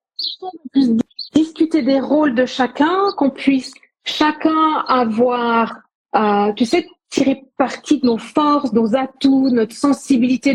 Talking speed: 125 wpm